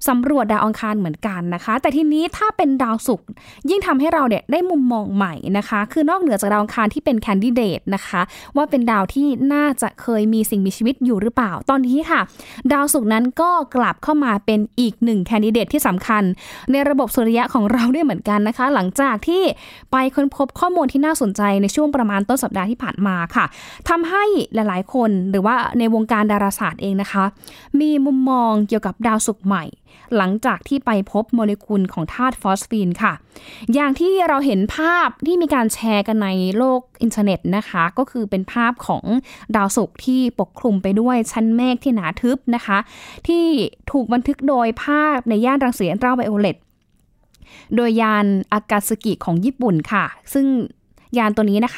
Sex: female